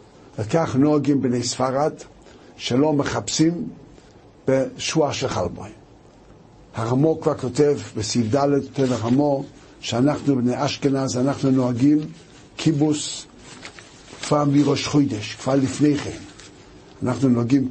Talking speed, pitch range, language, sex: 100 wpm, 125-155 Hz, Hebrew, male